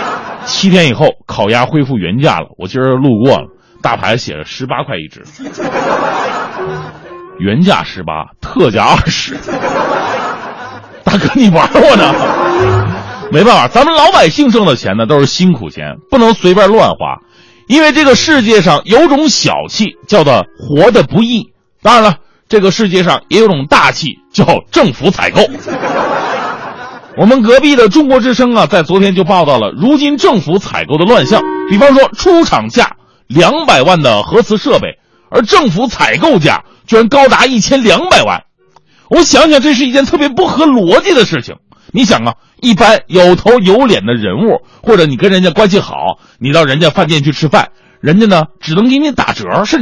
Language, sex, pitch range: Chinese, male, 180-280 Hz